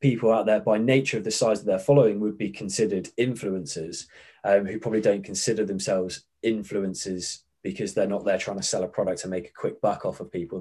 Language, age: English, 20-39